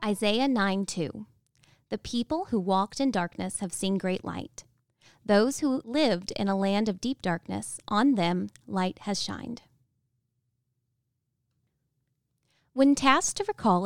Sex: female